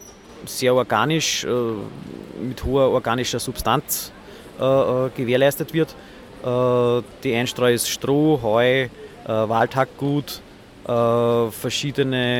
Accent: Austrian